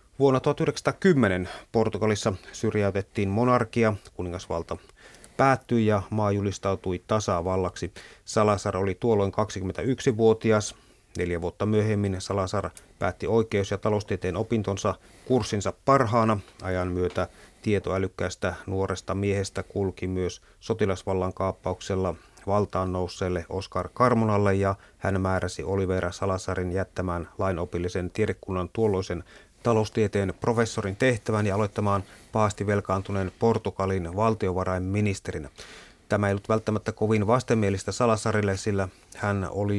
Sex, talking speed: male, 100 wpm